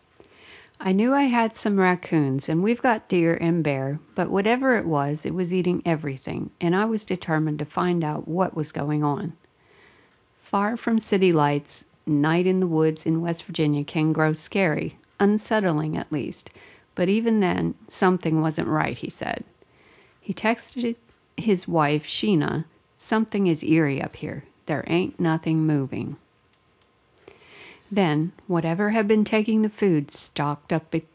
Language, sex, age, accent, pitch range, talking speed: English, female, 60-79, American, 155-195 Hz, 155 wpm